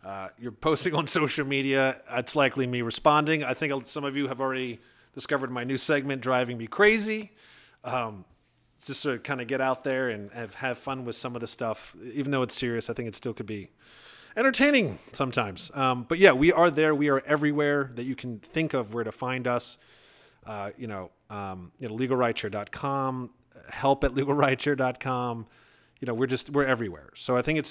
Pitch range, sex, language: 125-155 Hz, male, English